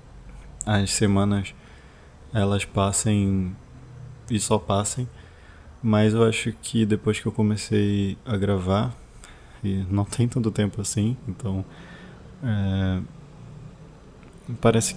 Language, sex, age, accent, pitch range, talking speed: Portuguese, male, 20-39, Brazilian, 95-115 Hz, 105 wpm